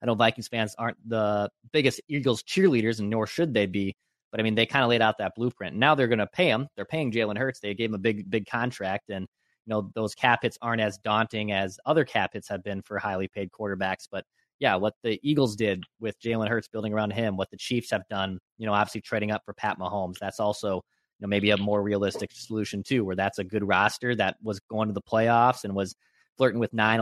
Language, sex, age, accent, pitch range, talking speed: English, male, 20-39, American, 105-120 Hz, 245 wpm